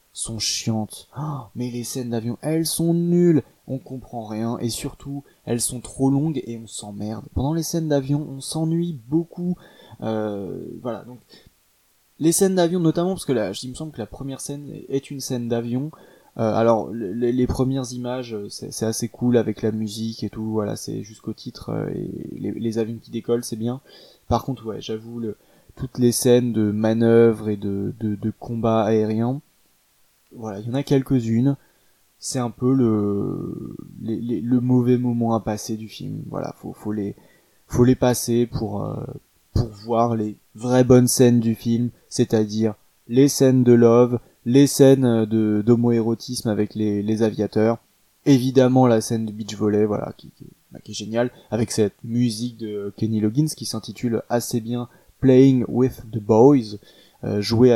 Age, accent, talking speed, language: 20-39, French, 175 wpm, French